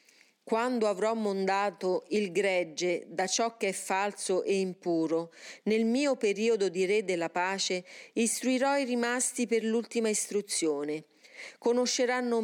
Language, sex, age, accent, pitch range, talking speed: Italian, female, 40-59, native, 185-240 Hz, 125 wpm